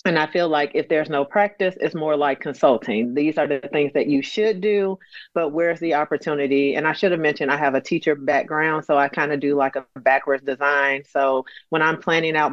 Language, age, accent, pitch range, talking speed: English, 40-59, American, 140-170 Hz, 230 wpm